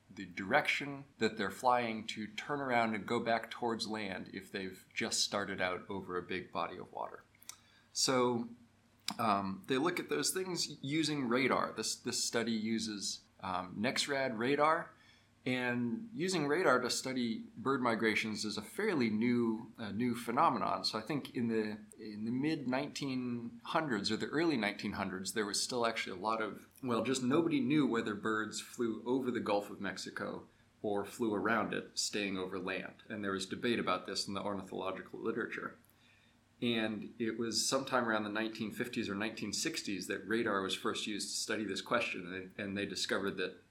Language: English